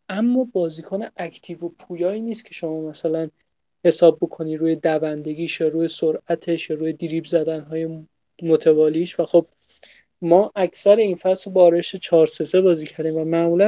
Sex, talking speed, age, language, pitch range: male, 160 wpm, 30-49, Persian, 160-185 Hz